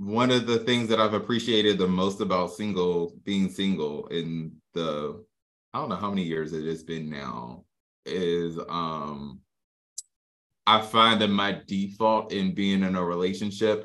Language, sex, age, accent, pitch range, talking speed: English, male, 20-39, American, 90-105 Hz, 160 wpm